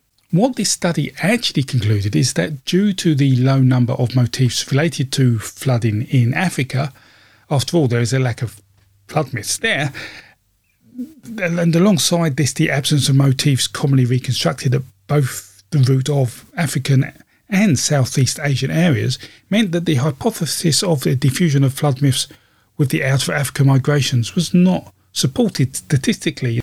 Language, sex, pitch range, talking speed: English, male, 125-155 Hz, 155 wpm